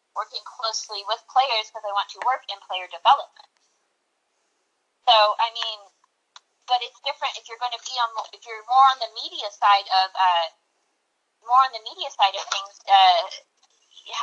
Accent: American